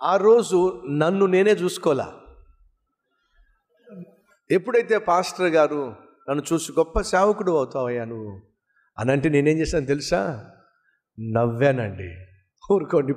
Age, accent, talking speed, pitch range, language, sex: 50-69, native, 95 wpm, 125-180 Hz, Telugu, male